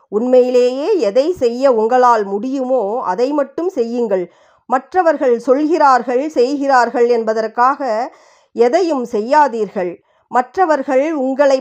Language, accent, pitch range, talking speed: Tamil, native, 220-295 Hz, 85 wpm